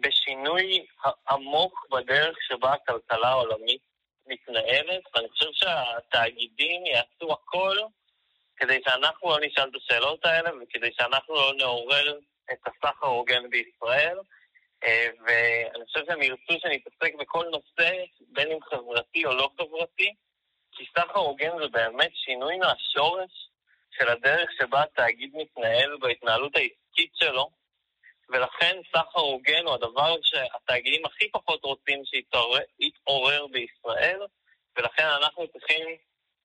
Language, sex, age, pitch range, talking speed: Hebrew, male, 30-49, 130-170 Hz, 115 wpm